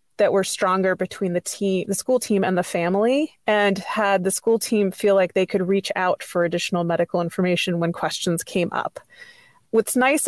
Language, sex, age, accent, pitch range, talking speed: English, female, 20-39, American, 185-225 Hz, 195 wpm